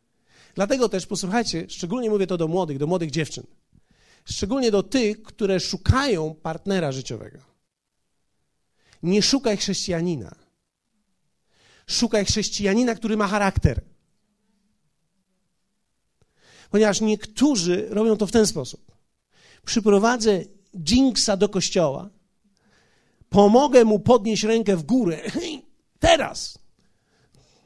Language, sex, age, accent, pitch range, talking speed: Polish, male, 40-59, native, 190-260 Hz, 95 wpm